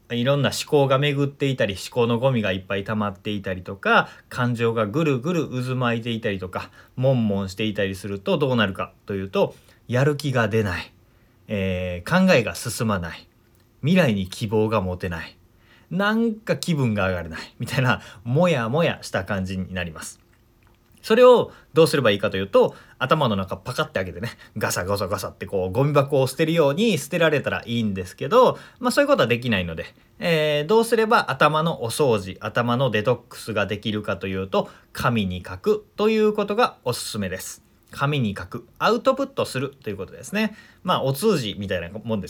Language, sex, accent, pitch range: Japanese, male, native, 105-170 Hz